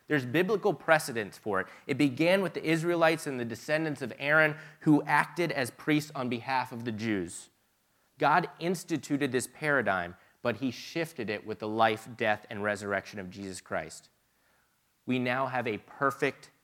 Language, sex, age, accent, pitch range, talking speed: English, male, 30-49, American, 110-140 Hz, 165 wpm